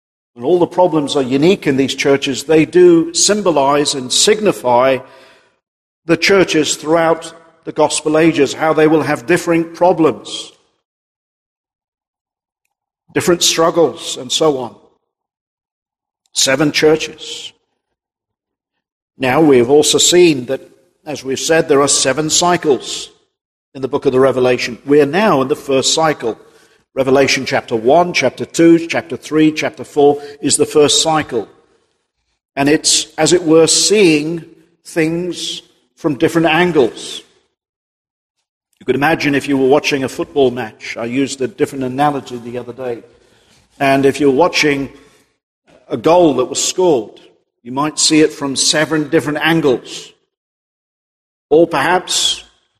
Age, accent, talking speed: 50-69, British, 135 wpm